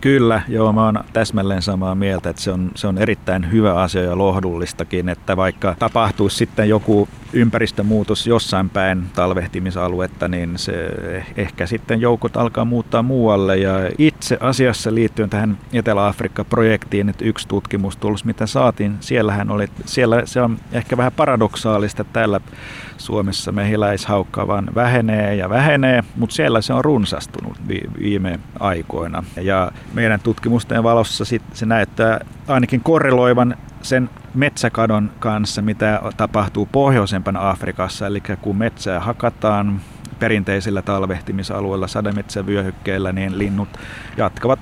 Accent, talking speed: native, 125 wpm